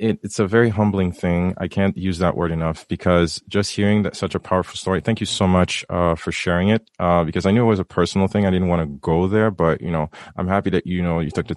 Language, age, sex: English, 30-49, male